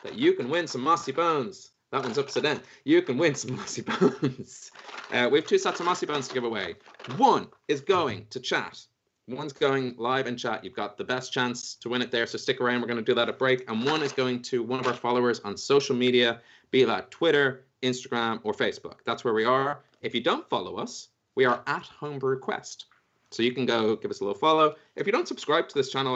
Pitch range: 120-150 Hz